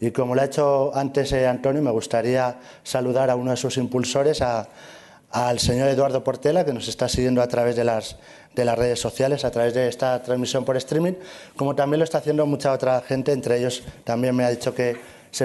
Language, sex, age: Spanish, male, 30-49